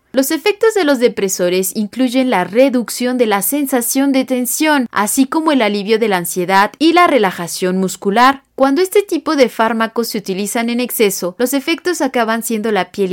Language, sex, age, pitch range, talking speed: Spanish, female, 30-49, 200-270 Hz, 180 wpm